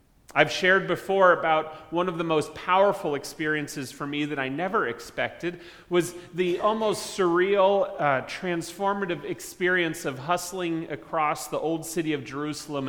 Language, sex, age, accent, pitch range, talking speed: English, male, 30-49, American, 130-170 Hz, 145 wpm